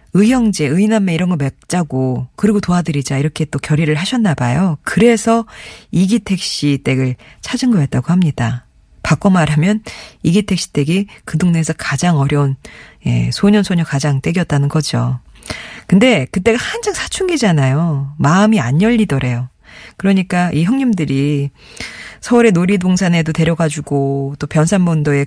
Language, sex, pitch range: Korean, female, 145-205 Hz